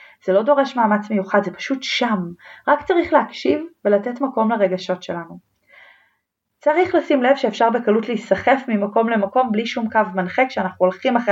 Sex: female